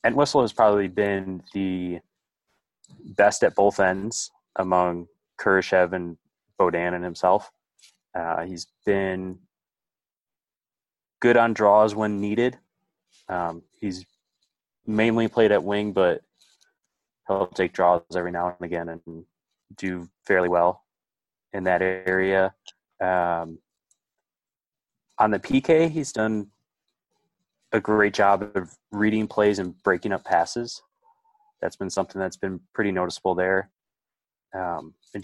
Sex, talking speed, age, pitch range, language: male, 120 wpm, 20-39, 90-110 Hz, English